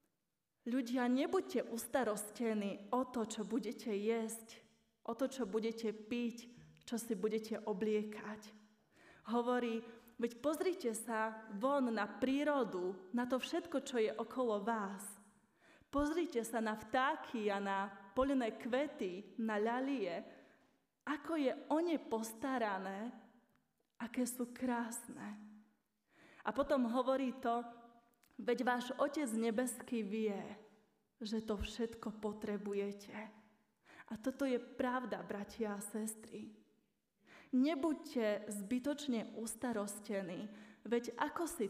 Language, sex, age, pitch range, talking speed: Slovak, female, 20-39, 210-250 Hz, 110 wpm